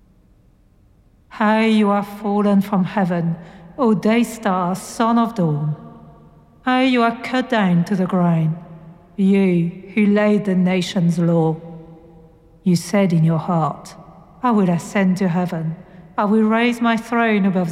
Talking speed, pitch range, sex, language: 150 wpm, 175-225 Hz, female, English